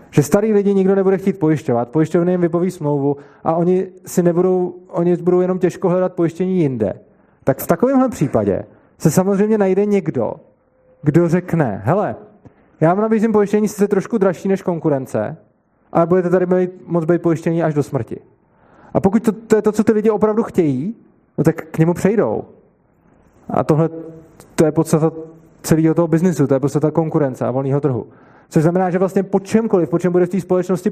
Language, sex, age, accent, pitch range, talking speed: Czech, male, 20-39, native, 150-185 Hz, 180 wpm